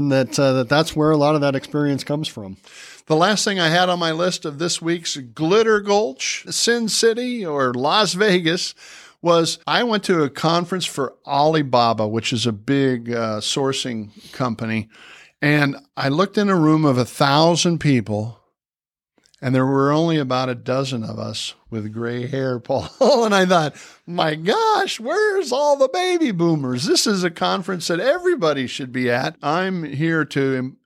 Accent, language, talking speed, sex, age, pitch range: American, English, 175 wpm, male, 50-69, 130-175 Hz